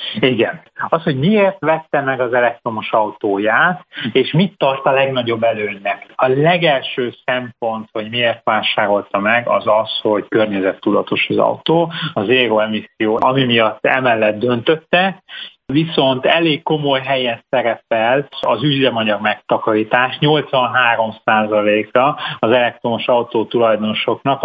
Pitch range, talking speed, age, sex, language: 115-145 Hz, 115 wpm, 30-49, male, Hungarian